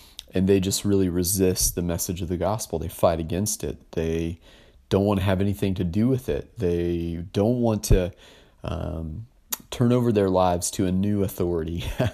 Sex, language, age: male, English, 30-49